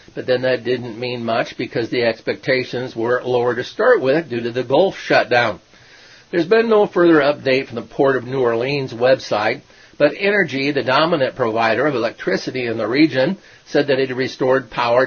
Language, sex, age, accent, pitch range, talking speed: English, male, 50-69, American, 120-150 Hz, 185 wpm